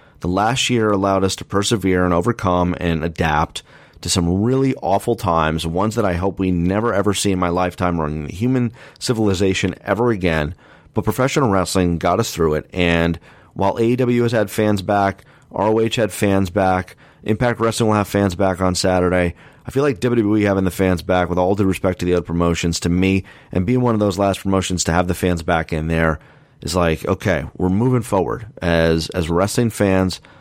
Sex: male